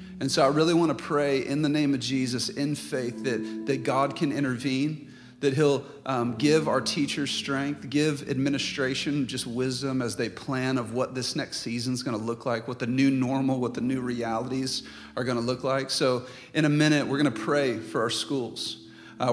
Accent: American